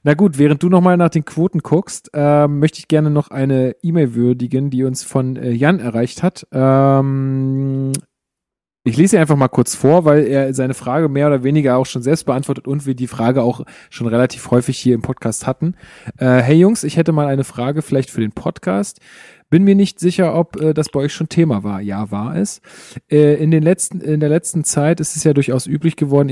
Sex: male